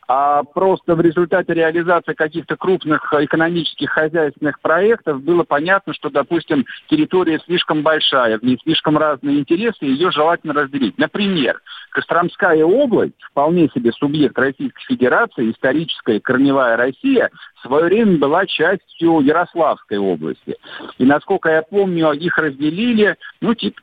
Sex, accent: male, native